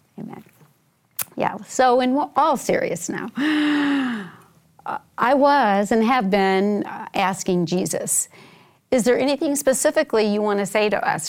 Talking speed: 130 wpm